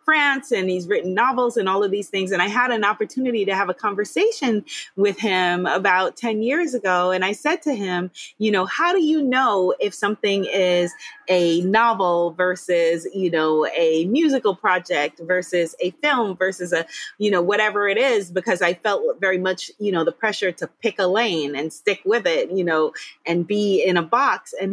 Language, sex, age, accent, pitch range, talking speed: English, female, 30-49, American, 170-230 Hz, 200 wpm